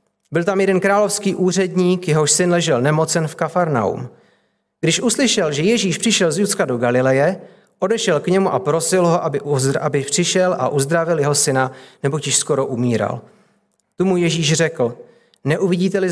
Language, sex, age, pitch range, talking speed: Czech, male, 40-59, 140-180 Hz, 155 wpm